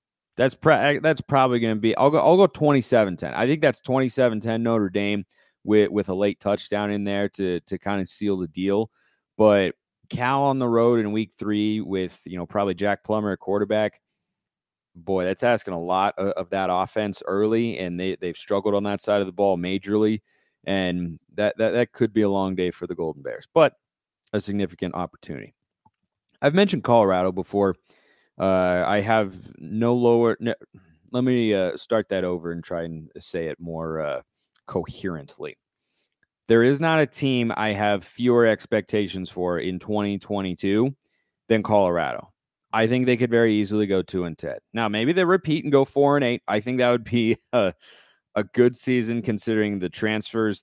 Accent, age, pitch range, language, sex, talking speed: American, 30-49, 95-115 Hz, English, male, 190 wpm